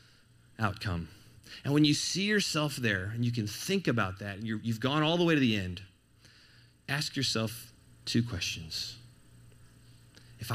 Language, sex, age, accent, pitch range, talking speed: English, male, 30-49, American, 110-175 Hz, 160 wpm